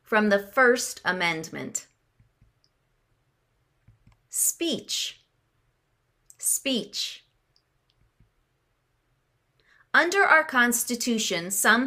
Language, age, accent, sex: English, 30-49, American, female